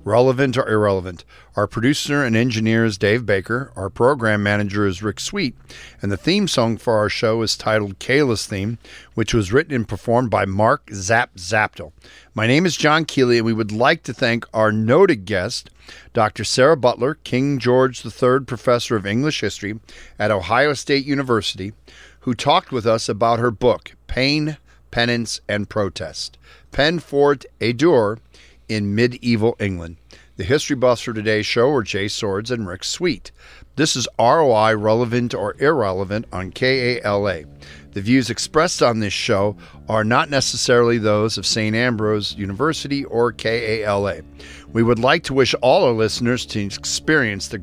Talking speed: 165 wpm